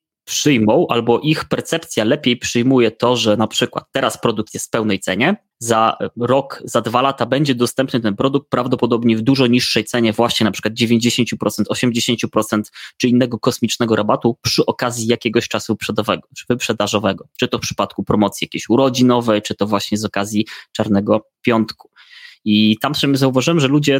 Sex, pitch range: male, 110-125 Hz